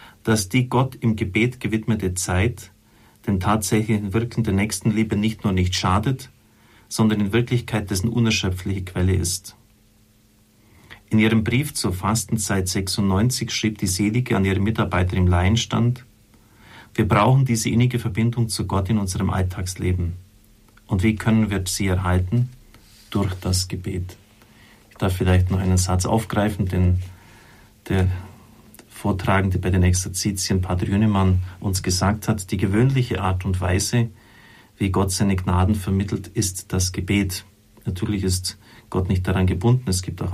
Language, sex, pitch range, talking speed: German, male, 95-110 Hz, 145 wpm